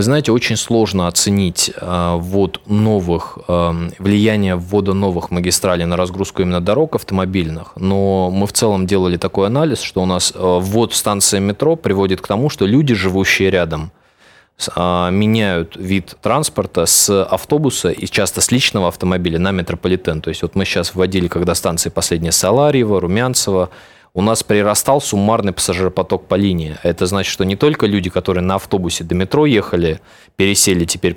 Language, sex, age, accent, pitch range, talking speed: Russian, male, 20-39, native, 85-105 Hz, 160 wpm